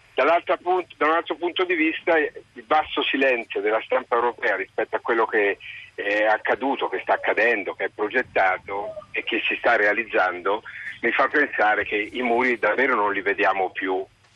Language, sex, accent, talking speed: Italian, male, native, 165 wpm